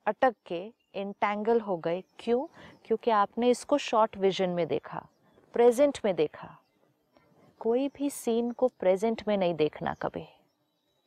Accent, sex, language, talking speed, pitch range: native, female, Hindi, 135 wpm, 195-255 Hz